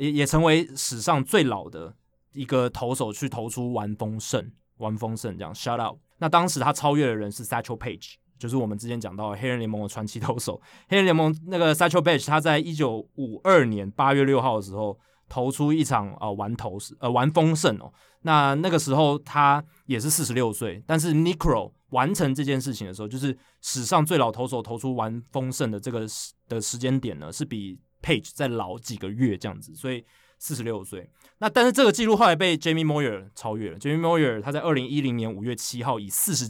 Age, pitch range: 20-39, 110-150 Hz